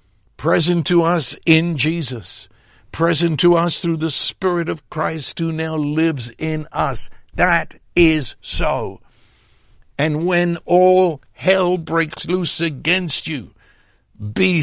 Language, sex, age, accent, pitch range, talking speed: English, male, 60-79, American, 115-160 Hz, 125 wpm